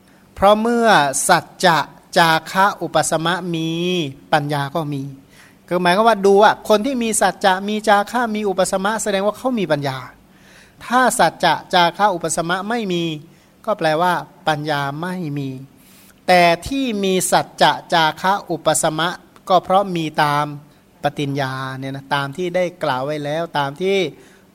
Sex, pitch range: male, 150-195 Hz